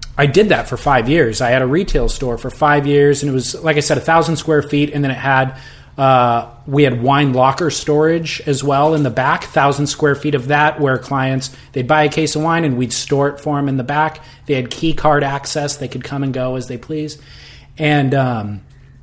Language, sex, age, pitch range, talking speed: English, male, 30-49, 125-150 Hz, 240 wpm